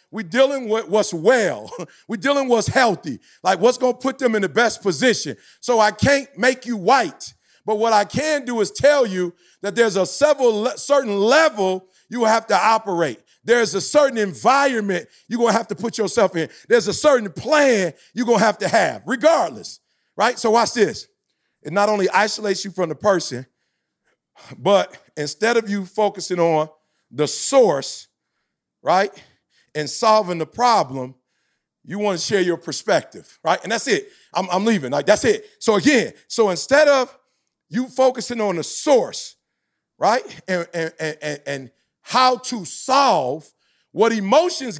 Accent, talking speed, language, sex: American, 170 wpm, English, male